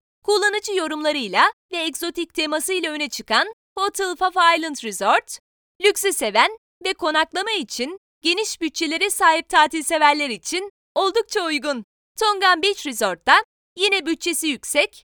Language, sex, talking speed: Turkish, female, 115 wpm